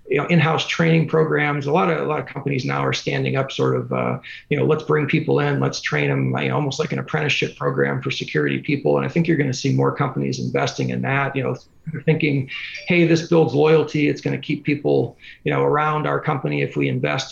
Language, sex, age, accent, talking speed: English, male, 40-59, American, 245 wpm